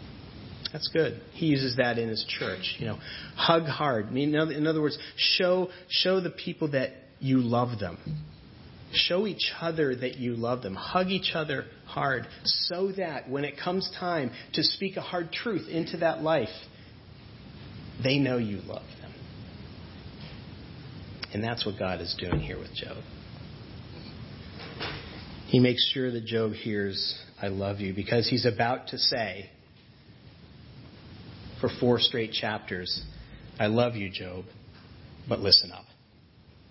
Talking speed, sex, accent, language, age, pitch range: 140 wpm, male, American, English, 40-59, 110-150 Hz